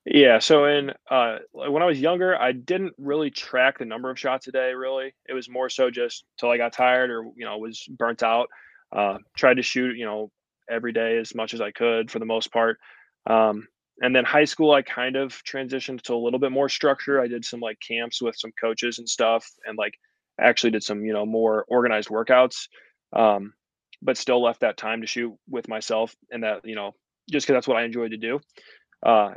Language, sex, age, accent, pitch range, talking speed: English, male, 20-39, American, 115-130 Hz, 225 wpm